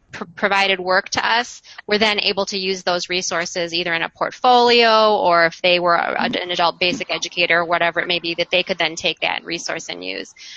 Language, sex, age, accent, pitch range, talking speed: English, female, 20-39, American, 175-215 Hz, 210 wpm